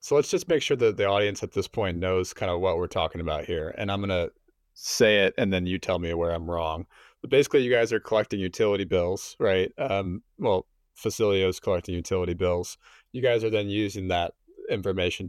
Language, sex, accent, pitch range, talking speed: English, male, American, 90-110 Hz, 220 wpm